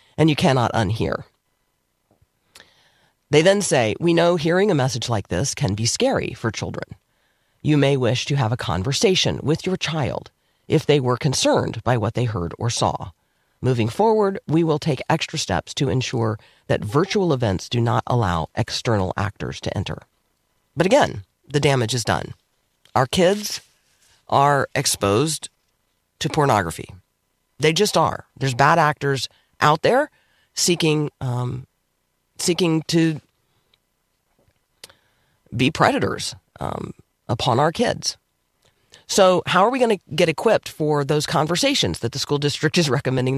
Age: 40-59